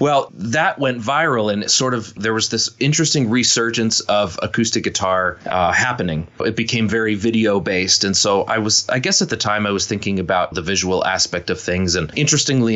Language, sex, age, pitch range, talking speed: English, male, 30-49, 95-115 Hz, 200 wpm